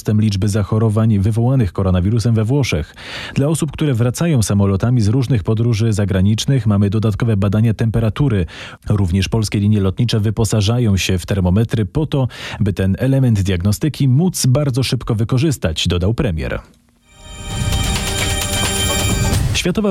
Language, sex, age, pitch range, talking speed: Polish, male, 40-59, 100-130 Hz, 120 wpm